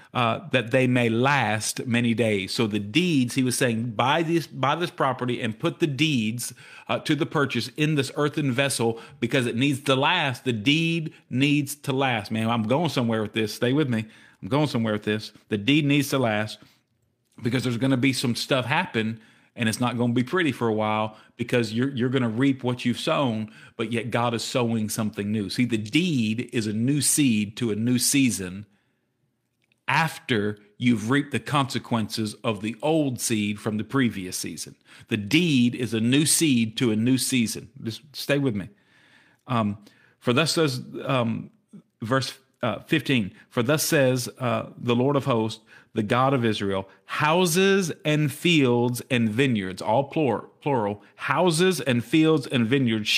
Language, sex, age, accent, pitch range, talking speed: English, male, 50-69, American, 115-140 Hz, 185 wpm